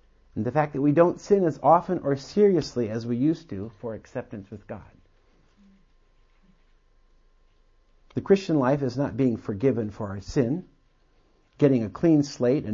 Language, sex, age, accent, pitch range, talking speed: English, male, 50-69, American, 105-150 Hz, 160 wpm